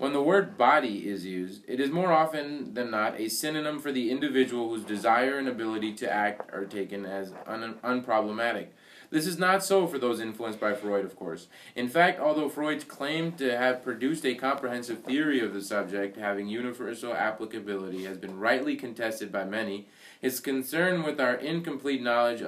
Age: 20-39